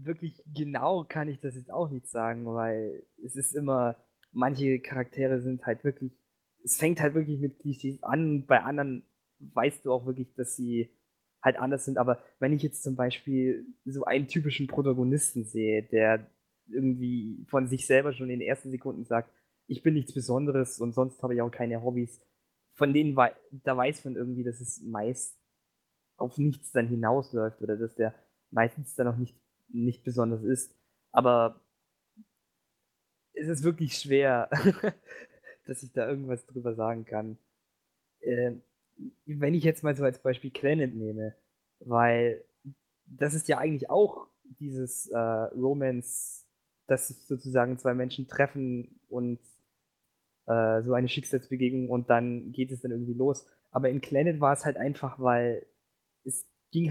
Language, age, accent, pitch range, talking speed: German, 20-39, German, 120-140 Hz, 160 wpm